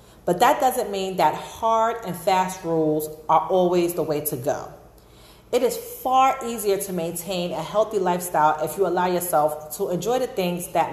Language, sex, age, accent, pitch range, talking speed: English, female, 40-59, American, 155-205 Hz, 180 wpm